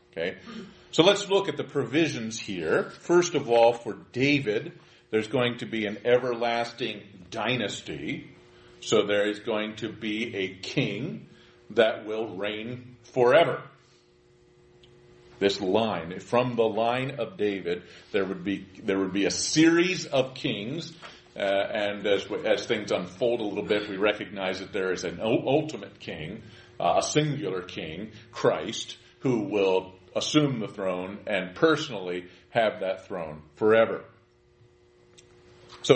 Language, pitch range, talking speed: English, 100-135 Hz, 140 wpm